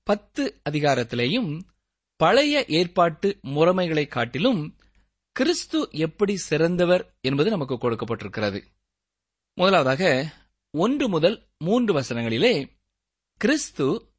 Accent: native